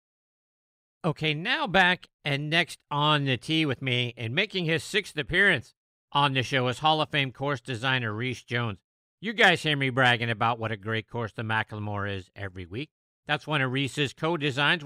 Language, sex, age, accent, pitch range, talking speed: English, male, 50-69, American, 120-165 Hz, 190 wpm